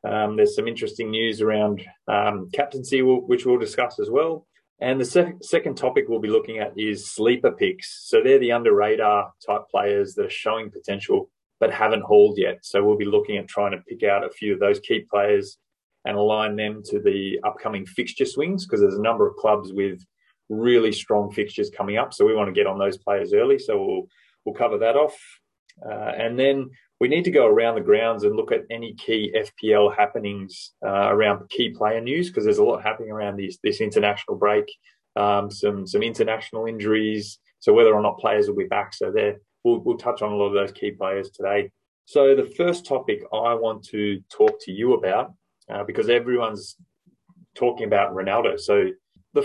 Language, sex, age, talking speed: English, male, 30-49, 200 wpm